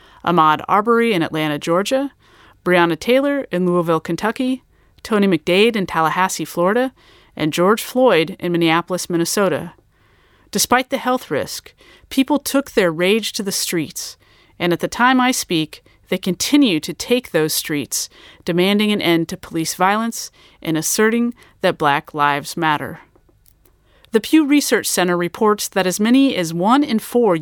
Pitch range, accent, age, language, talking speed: 170-235 Hz, American, 30-49, English, 150 wpm